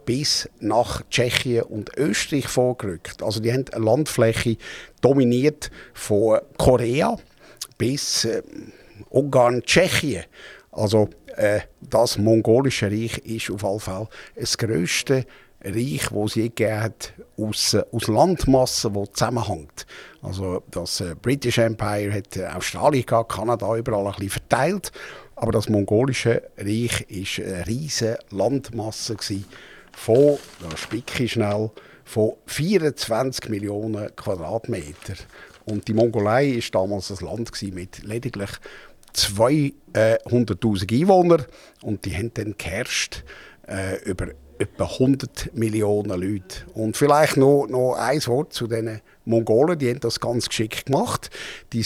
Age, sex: 50-69, male